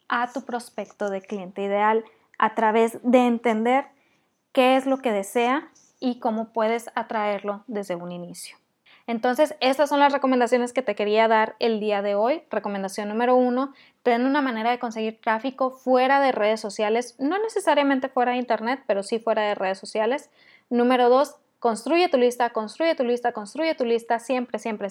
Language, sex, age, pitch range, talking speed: Spanish, female, 20-39, 220-265 Hz, 175 wpm